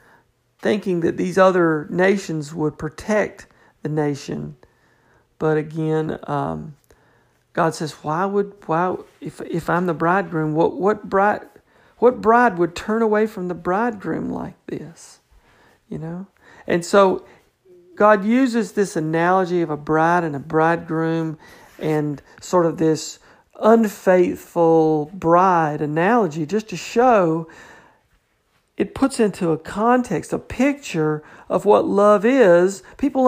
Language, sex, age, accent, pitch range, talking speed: English, male, 50-69, American, 160-210 Hz, 130 wpm